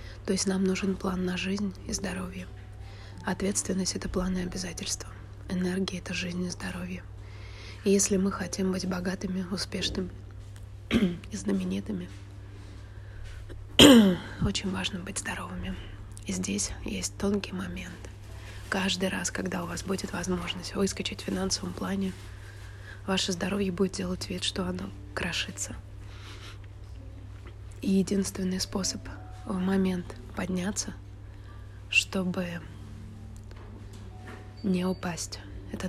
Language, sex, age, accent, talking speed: Russian, female, 20-39, native, 110 wpm